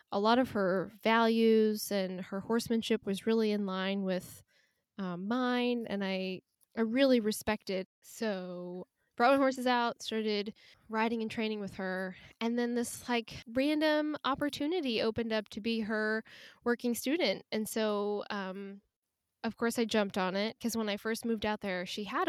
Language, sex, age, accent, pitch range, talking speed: English, female, 10-29, American, 195-235 Hz, 165 wpm